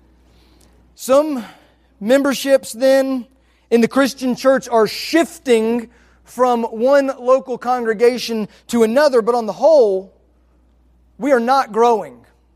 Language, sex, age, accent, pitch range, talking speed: English, male, 30-49, American, 195-255 Hz, 110 wpm